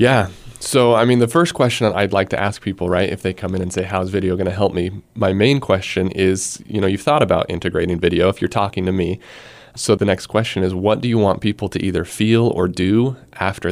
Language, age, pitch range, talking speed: English, 20-39, 95-115 Hz, 255 wpm